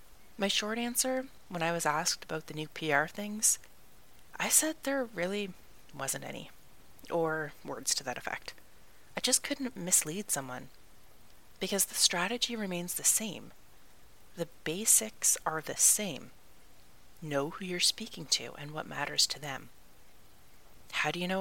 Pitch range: 160-210 Hz